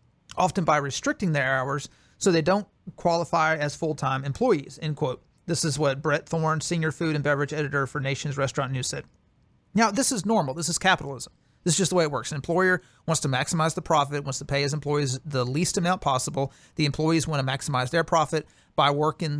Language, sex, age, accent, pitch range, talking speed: English, male, 40-59, American, 145-175 Hz, 210 wpm